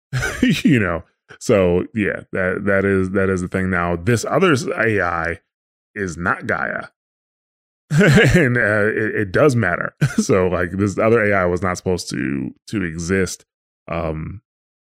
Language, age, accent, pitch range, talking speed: English, 20-39, American, 90-115 Hz, 145 wpm